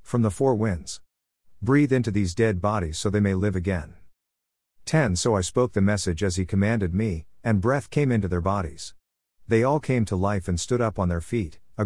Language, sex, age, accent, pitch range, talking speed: English, male, 50-69, American, 85-120 Hz, 215 wpm